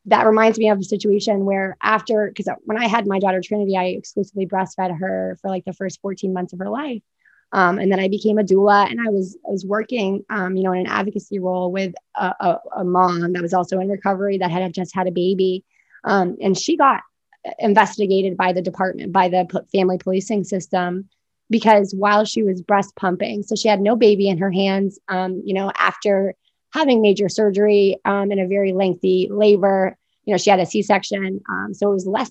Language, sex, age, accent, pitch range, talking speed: English, female, 20-39, American, 185-215 Hz, 215 wpm